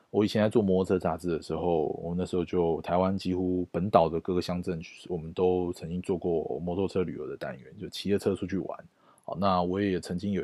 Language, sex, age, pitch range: Chinese, male, 20-39, 85-100 Hz